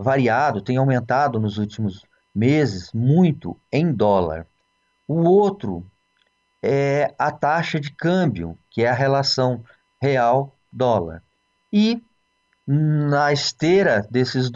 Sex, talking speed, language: male, 105 wpm, Portuguese